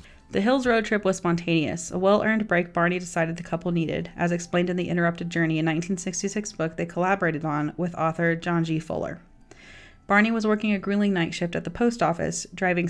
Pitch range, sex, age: 170-200 Hz, female, 30-49